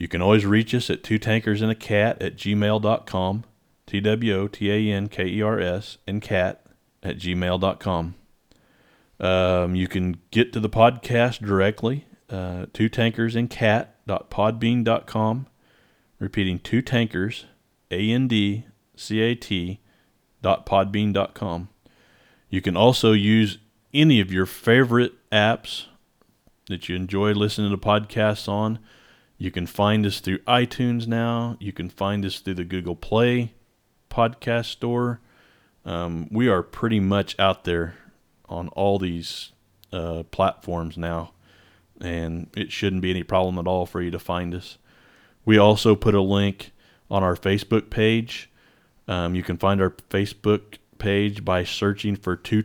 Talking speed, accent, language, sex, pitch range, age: 145 wpm, American, English, male, 90-110 Hz, 40-59